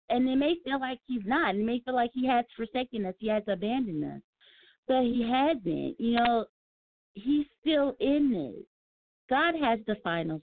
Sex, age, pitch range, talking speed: female, 40-59, 210-275 Hz, 185 wpm